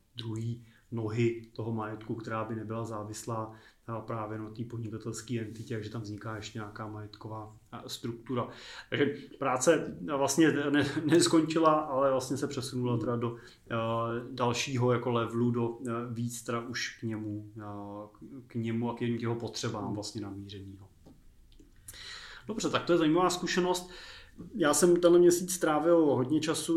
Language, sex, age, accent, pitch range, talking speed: Czech, male, 30-49, native, 115-135 Hz, 130 wpm